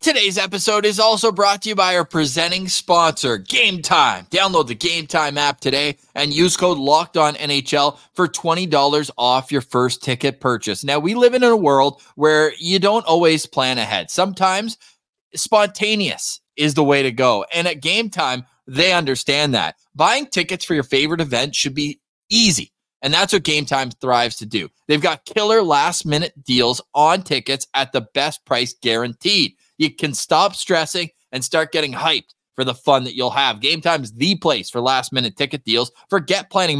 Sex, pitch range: male, 140-195 Hz